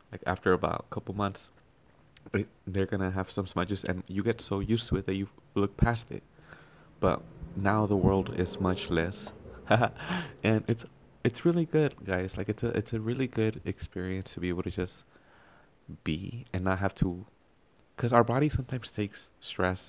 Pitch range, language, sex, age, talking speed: 90-110 Hz, English, male, 20-39, 180 wpm